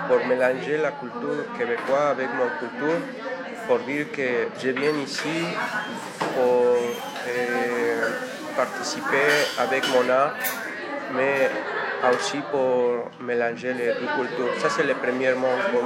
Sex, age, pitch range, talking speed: male, 40-59, 120-140 Hz, 115 wpm